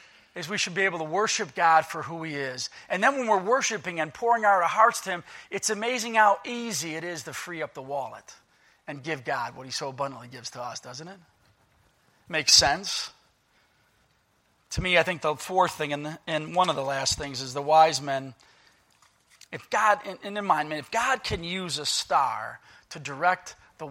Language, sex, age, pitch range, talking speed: English, male, 40-59, 140-180 Hz, 200 wpm